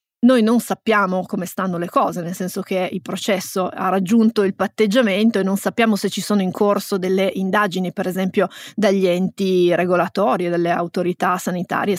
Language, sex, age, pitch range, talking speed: Italian, female, 20-39, 185-215 Hz, 175 wpm